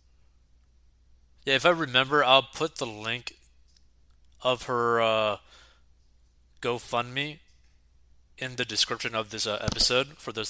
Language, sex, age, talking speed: English, male, 20-39, 120 wpm